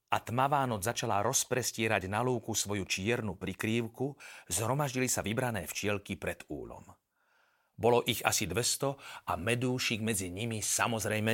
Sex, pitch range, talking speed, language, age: male, 115-185 Hz, 130 wpm, Slovak, 40-59